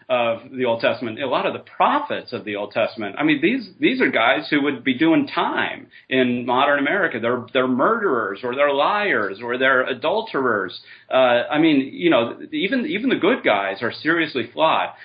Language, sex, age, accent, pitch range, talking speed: English, male, 30-49, American, 120-150 Hz, 195 wpm